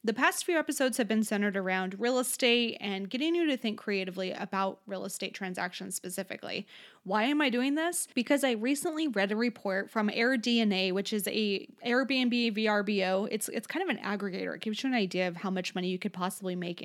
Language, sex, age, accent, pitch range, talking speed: English, female, 20-39, American, 200-250 Hz, 205 wpm